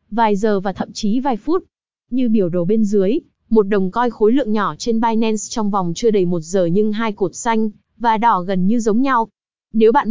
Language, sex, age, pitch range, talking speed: Vietnamese, female, 20-39, 200-250 Hz, 225 wpm